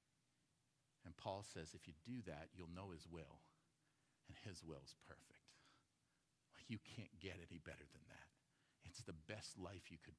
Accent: American